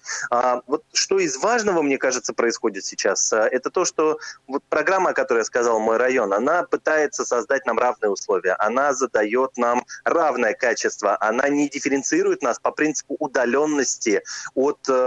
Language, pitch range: Russian, 125-190 Hz